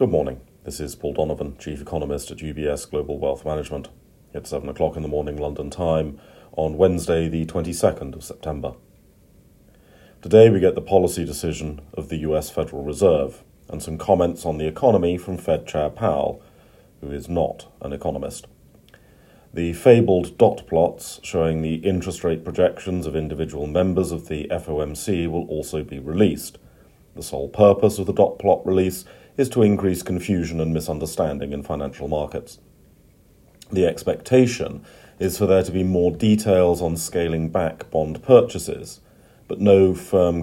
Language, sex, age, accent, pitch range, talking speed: English, male, 40-59, British, 80-95 Hz, 155 wpm